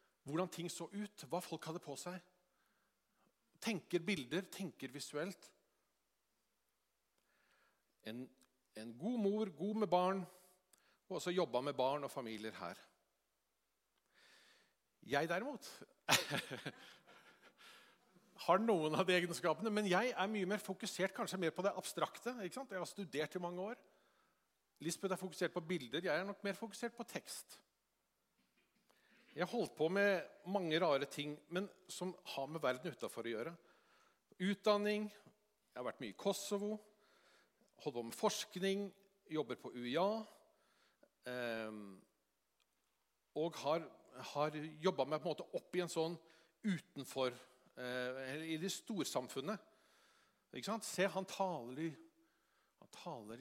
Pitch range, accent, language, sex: 150-200 Hz, Norwegian, English, male